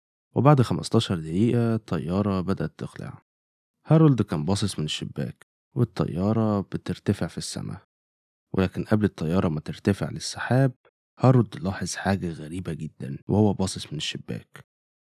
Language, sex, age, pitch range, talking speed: Arabic, male, 20-39, 85-110 Hz, 120 wpm